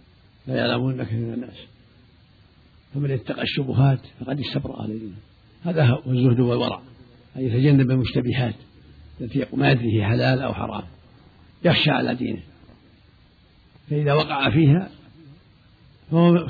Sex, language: male, Arabic